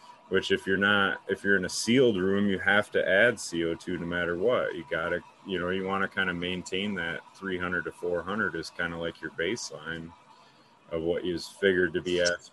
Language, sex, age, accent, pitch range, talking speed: English, male, 30-49, American, 85-95 Hz, 220 wpm